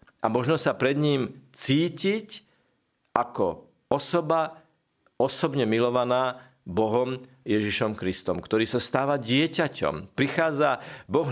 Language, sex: Slovak, male